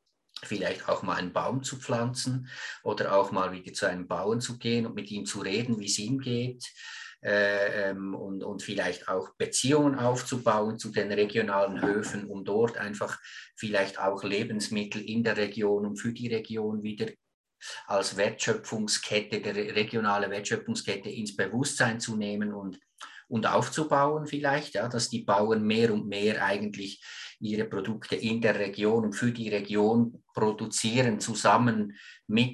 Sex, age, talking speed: male, 50-69, 155 wpm